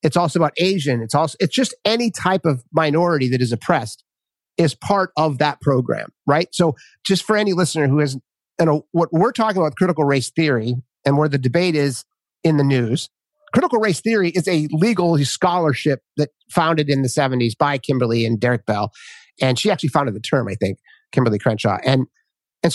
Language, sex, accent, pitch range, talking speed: English, male, American, 140-200 Hz, 195 wpm